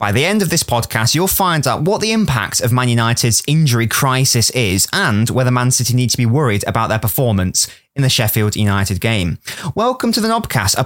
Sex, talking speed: male, 215 wpm